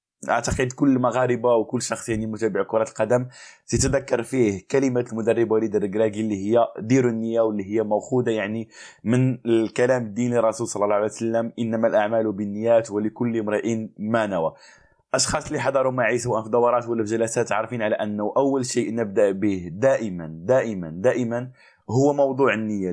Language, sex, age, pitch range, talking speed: Arabic, male, 20-39, 110-130 Hz, 160 wpm